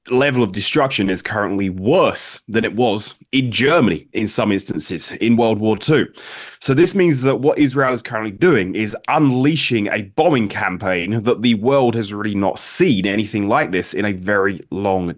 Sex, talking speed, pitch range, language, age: male, 180 wpm, 110-140 Hz, English, 20-39